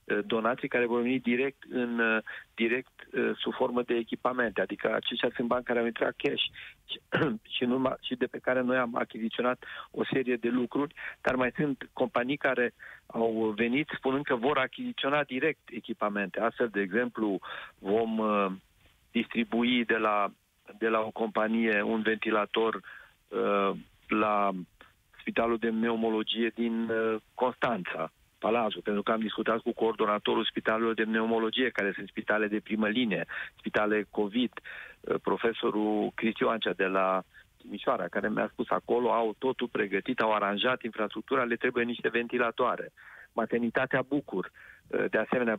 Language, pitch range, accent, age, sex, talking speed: Romanian, 105-120 Hz, native, 40-59, male, 135 wpm